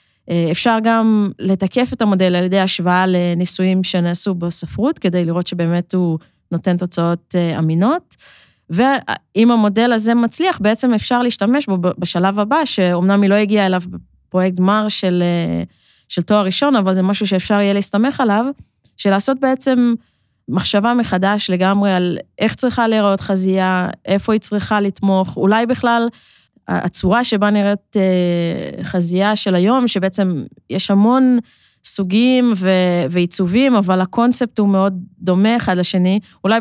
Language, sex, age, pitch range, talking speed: Hebrew, female, 20-39, 185-225 Hz, 135 wpm